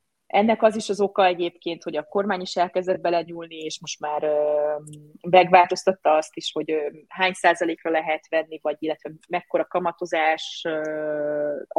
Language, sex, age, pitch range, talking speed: Hungarian, female, 30-49, 155-185 Hz, 155 wpm